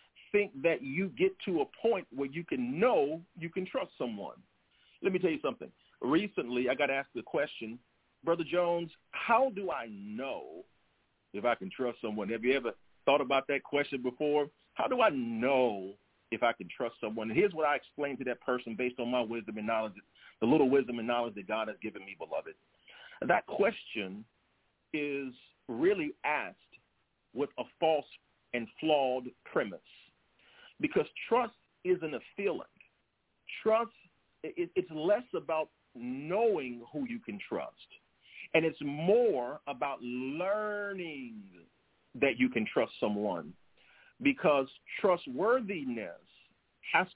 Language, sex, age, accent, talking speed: English, male, 40-59, American, 150 wpm